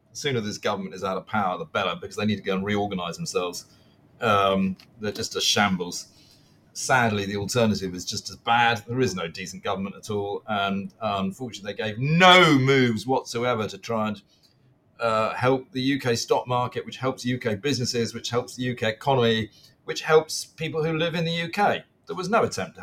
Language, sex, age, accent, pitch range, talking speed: English, male, 40-59, British, 110-160 Hz, 195 wpm